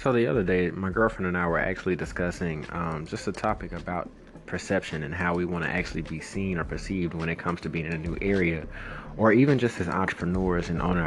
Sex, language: male, English